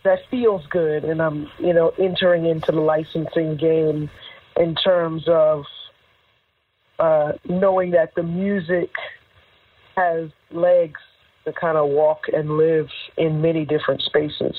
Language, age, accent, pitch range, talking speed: English, 40-59, American, 155-180 Hz, 130 wpm